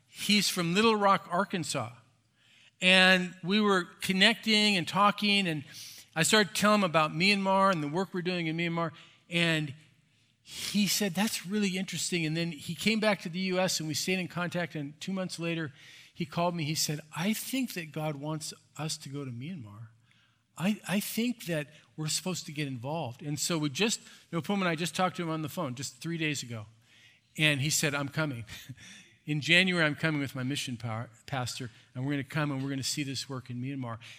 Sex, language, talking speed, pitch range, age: male, English, 205 wpm, 135-190 Hz, 50-69